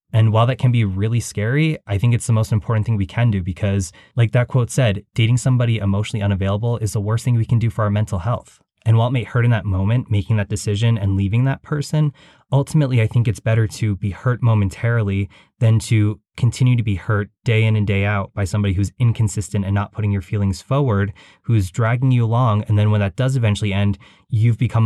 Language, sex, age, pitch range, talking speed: English, male, 20-39, 100-120 Hz, 230 wpm